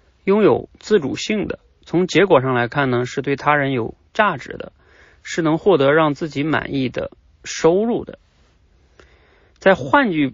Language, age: Chinese, 30-49